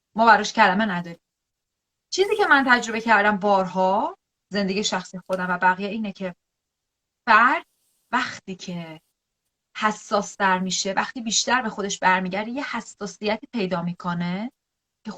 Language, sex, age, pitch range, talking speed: Persian, female, 30-49, 195-265 Hz, 125 wpm